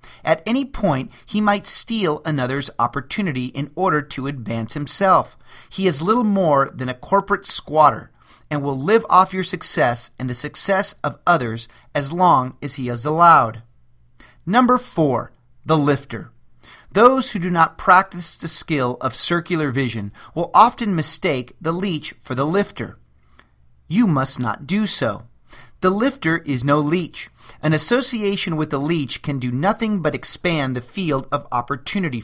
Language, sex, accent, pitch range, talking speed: English, male, American, 130-190 Hz, 155 wpm